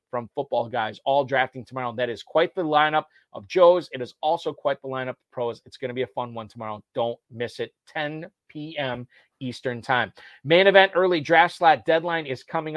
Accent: American